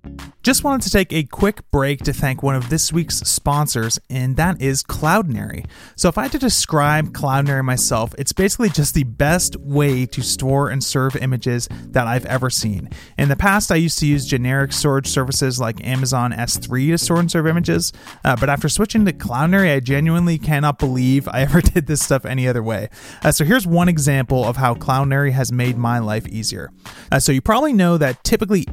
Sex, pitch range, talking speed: male, 125-165 Hz, 205 wpm